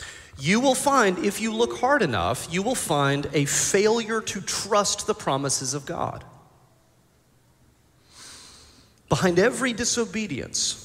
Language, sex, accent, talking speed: English, male, American, 120 wpm